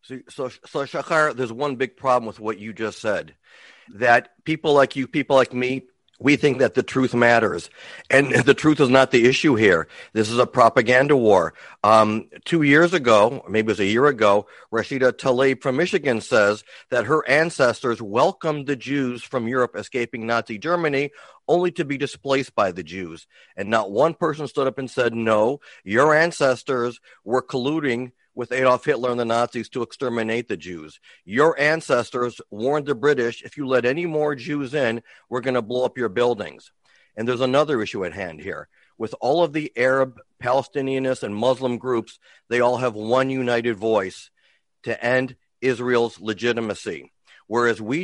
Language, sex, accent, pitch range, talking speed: English, male, American, 115-140 Hz, 175 wpm